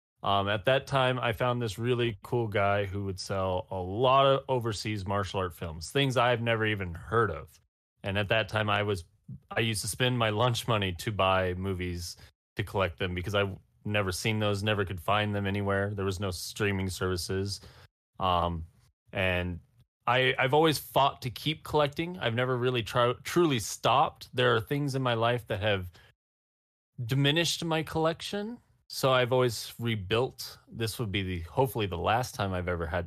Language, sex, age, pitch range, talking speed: English, male, 30-49, 95-125 Hz, 180 wpm